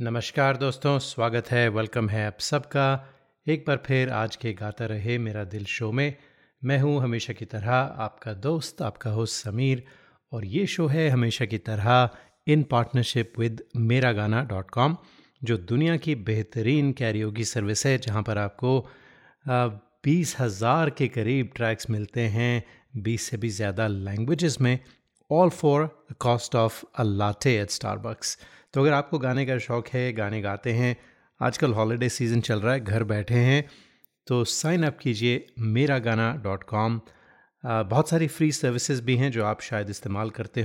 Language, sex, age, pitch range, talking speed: Hindi, male, 30-49, 110-135 Hz, 165 wpm